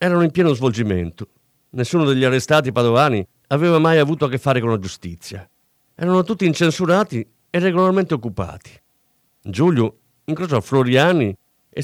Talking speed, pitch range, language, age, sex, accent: 135 wpm, 105-150 Hz, Italian, 50-69, male, native